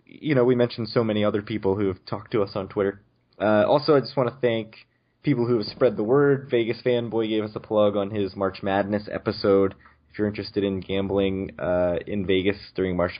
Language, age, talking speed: English, 20-39, 225 wpm